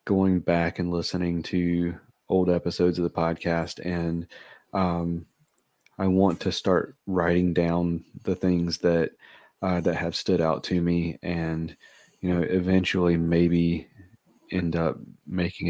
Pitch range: 85-90 Hz